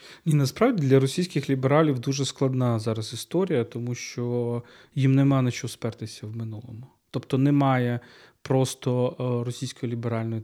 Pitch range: 115-135 Hz